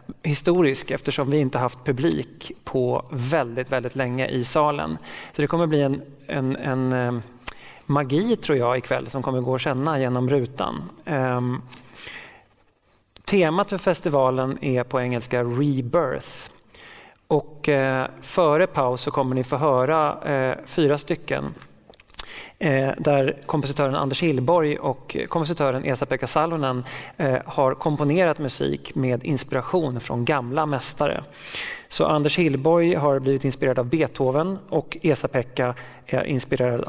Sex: male